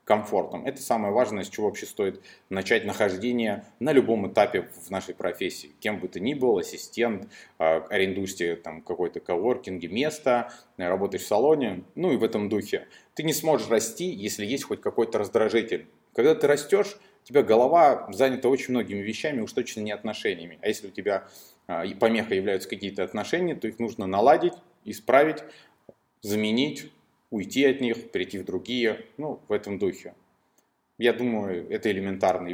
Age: 30-49